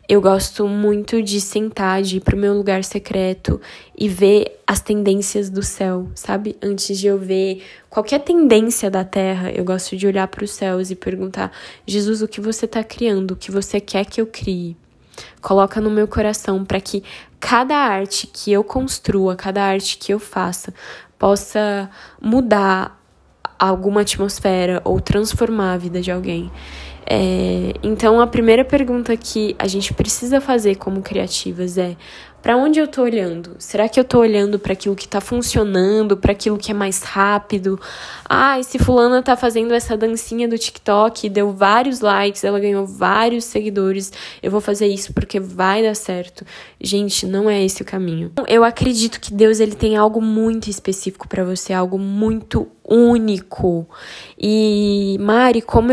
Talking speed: 165 wpm